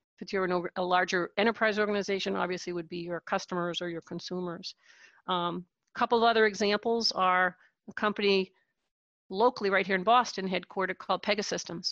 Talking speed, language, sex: 165 wpm, English, female